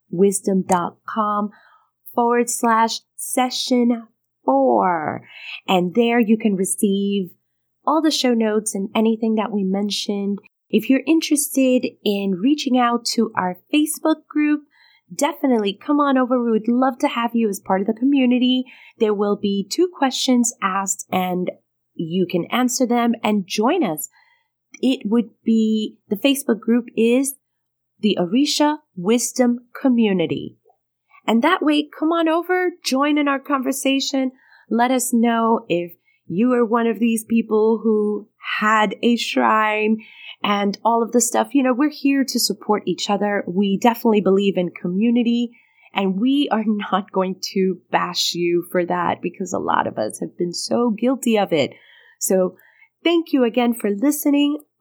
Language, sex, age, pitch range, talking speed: English, female, 30-49, 200-265 Hz, 150 wpm